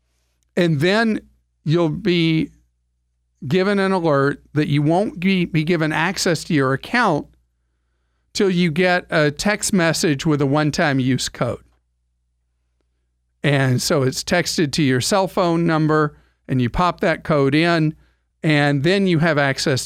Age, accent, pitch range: 50-69, American, 115-175 Hz